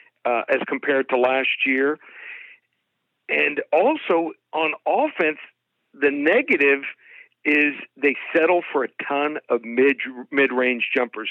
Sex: male